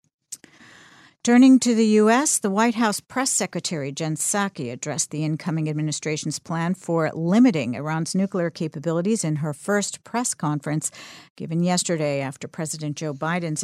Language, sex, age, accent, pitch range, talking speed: English, female, 50-69, American, 150-205 Hz, 140 wpm